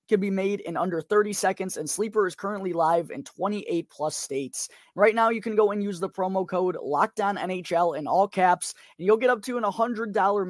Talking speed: 205 wpm